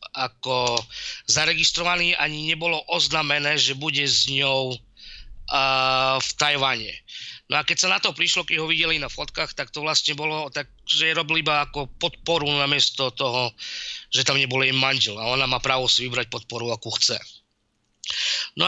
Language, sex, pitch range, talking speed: Slovak, male, 130-165 Hz, 165 wpm